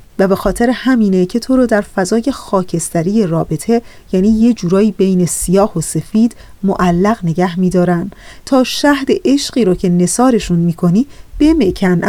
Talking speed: 150 wpm